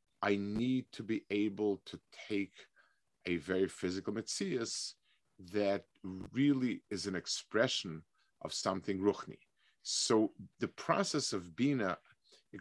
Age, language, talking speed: 50-69, English, 120 wpm